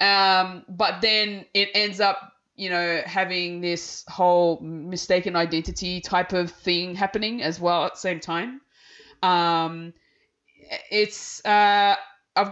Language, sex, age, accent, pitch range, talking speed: English, female, 20-39, Australian, 175-225 Hz, 130 wpm